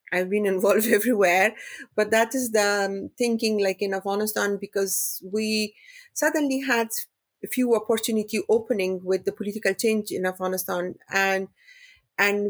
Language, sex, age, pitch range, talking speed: English, female, 30-49, 185-225 Hz, 140 wpm